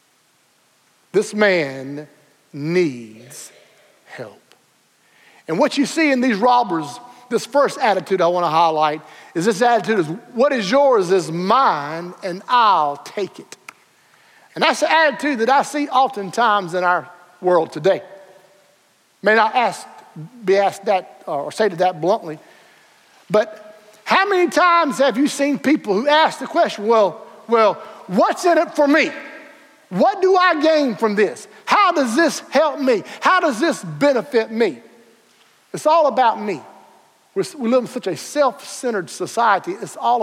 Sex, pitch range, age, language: male, 190-285 Hz, 50-69, English